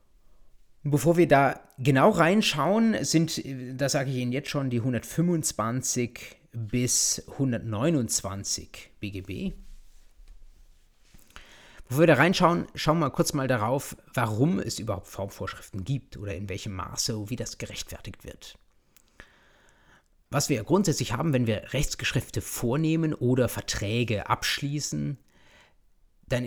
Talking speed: 115 wpm